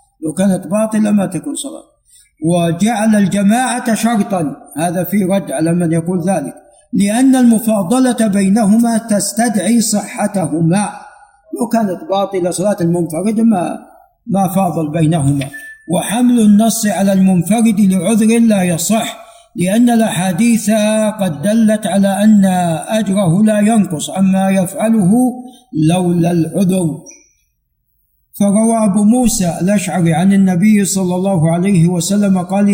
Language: Arabic